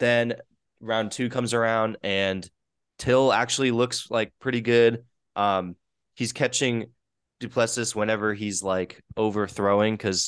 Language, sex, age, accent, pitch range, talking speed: English, male, 20-39, American, 90-110 Hz, 125 wpm